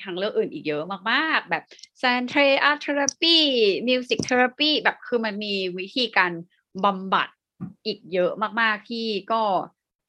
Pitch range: 180-235 Hz